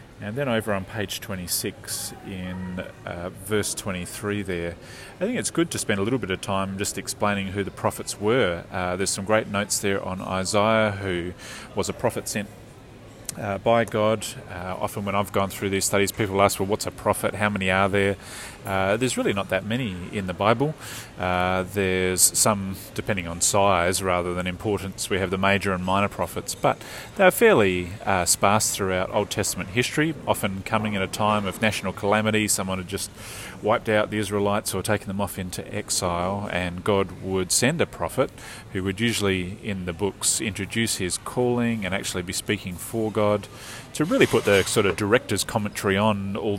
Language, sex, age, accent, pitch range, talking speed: English, male, 30-49, Australian, 95-110 Hz, 190 wpm